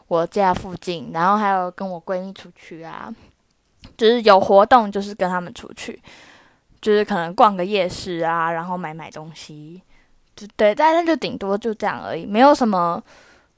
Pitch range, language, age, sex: 175-225 Hz, Chinese, 10-29, female